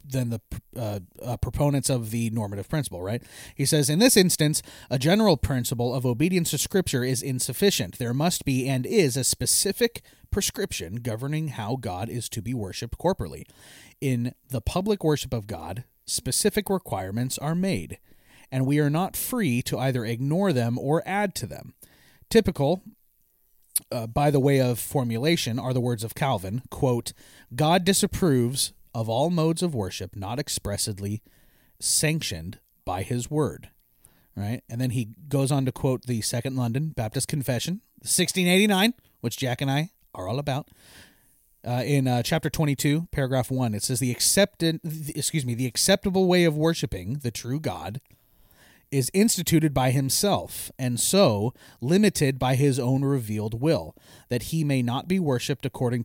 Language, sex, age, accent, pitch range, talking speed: English, male, 30-49, American, 120-155 Hz, 165 wpm